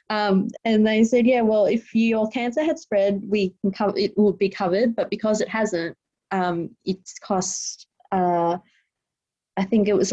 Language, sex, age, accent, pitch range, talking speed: English, female, 20-39, Australian, 190-225 Hz, 180 wpm